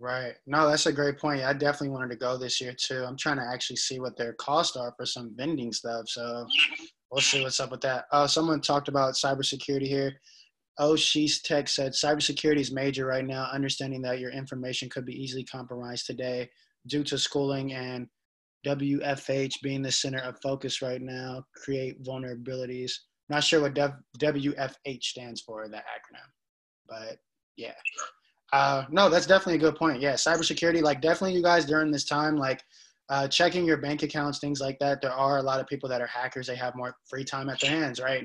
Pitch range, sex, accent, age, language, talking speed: 125-145 Hz, male, American, 20-39, English, 195 wpm